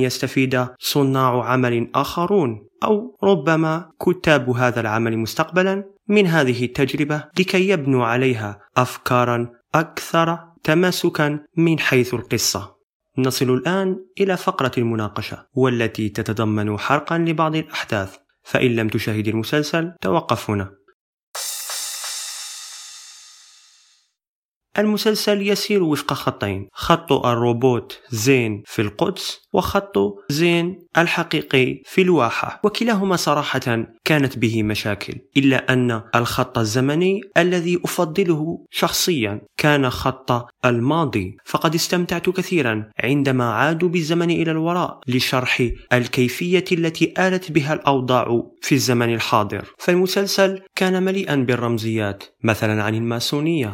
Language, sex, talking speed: Arabic, male, 100 wpm